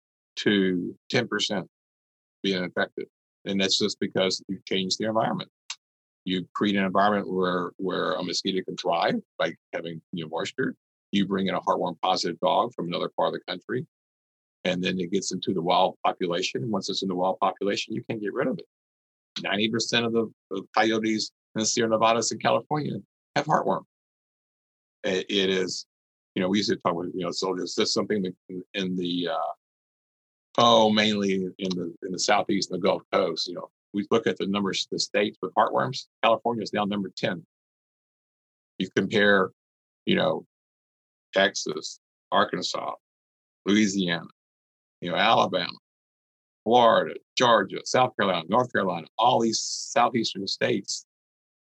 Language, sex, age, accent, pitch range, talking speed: English, male, 50-69, American, 70-105 Hz, 165 wpm